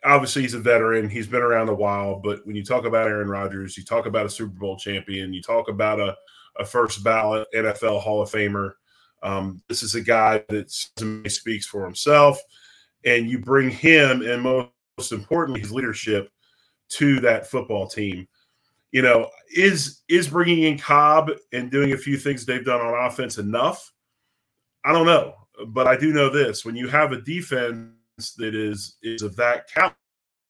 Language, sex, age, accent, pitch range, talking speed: English, male, 30-49, American, 110-140 Hz, 180 wpm